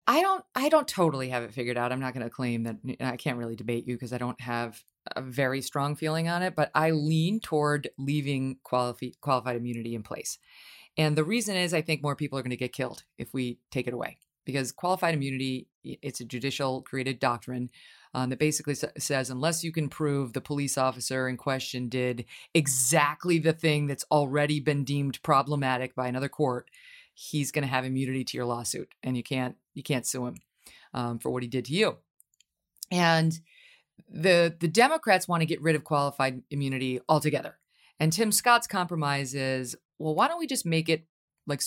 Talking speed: 200 wpm